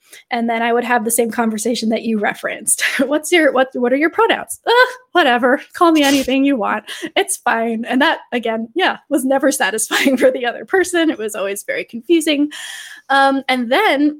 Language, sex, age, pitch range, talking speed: English, female, 10-29, 230-280 Hz, 195 wpm